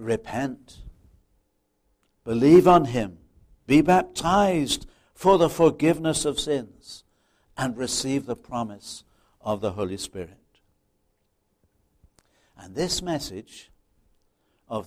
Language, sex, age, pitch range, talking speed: English, male, 60-79, 100-140 Hz, 95 wpm